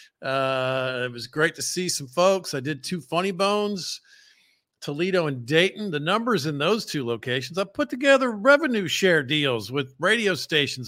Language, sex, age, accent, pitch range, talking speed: English, male, 50-69, American, 125-185 Hz, 170 wpm